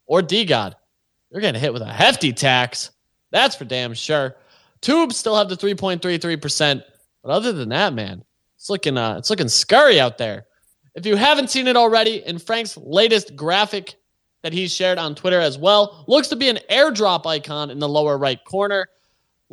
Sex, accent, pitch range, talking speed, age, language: male, American, 145-205 Hz, 185 wpm, 20-39, English